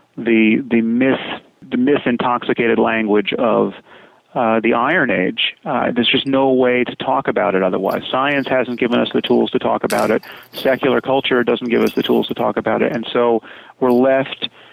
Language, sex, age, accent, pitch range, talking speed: English, male, 30-49, American, 110-130 Hz, 190 wpm